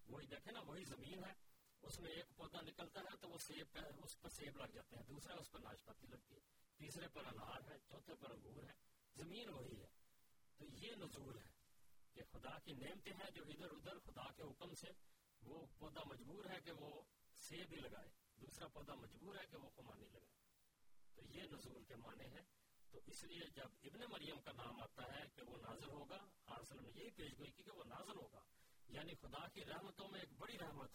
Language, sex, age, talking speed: Urdu, male, 40-59, 145 wpm